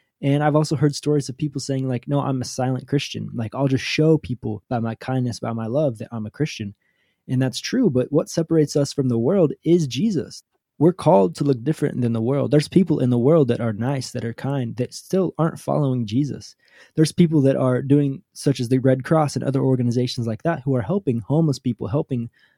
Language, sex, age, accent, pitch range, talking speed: English, male, 20-39, American, 125-155 Hz, 230 wpm